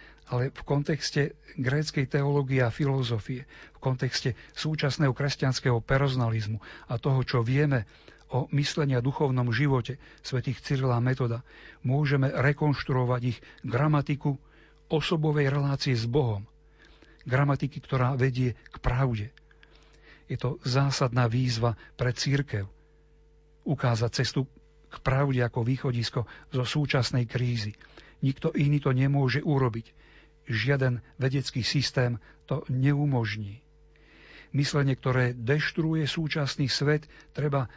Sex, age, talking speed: male, 50-69, 110 wpm